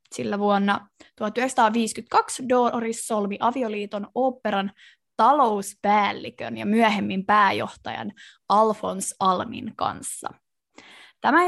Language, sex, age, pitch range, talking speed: Finnish, female, 20-39, 200-235 Hz, 80 wpm